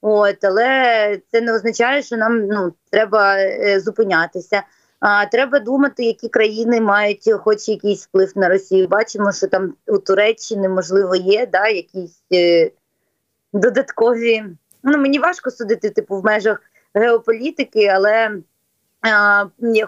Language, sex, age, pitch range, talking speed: Ukrainian, female, 20-39, 195-230 Hz, 130 wpm